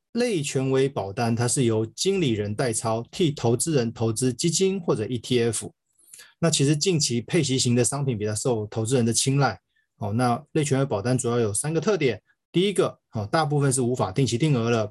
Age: 20-39